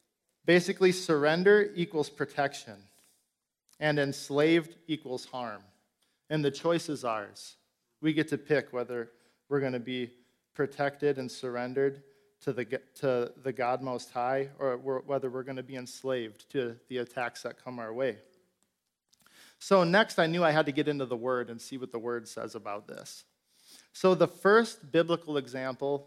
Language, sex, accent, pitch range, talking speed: English, male, American, 130-155 Hz, 160 wpm